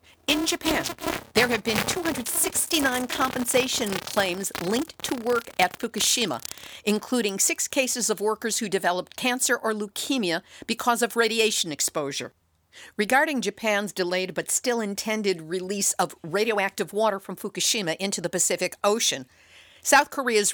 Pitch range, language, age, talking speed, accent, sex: 185-250 Hz, English, 50-69, 130 wpm, American, female